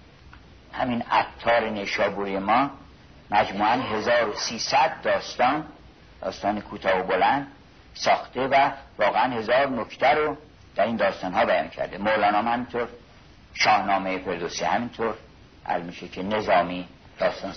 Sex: male